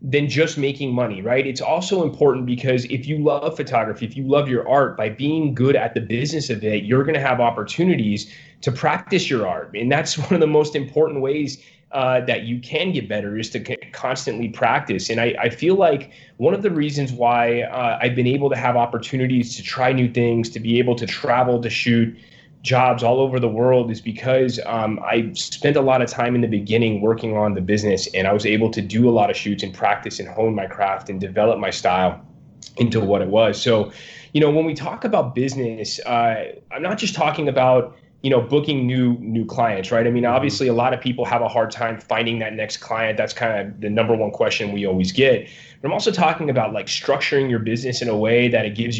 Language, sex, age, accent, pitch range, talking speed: English, male, 30-49, American, 115-135 Hz, 230 wpm